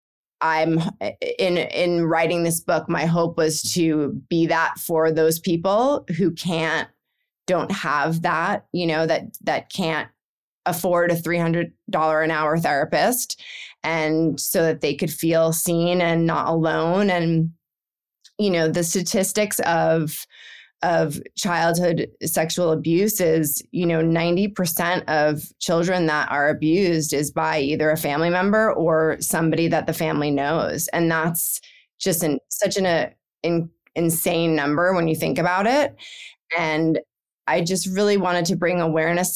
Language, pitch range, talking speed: English, 160-180 Hz, 150 wpm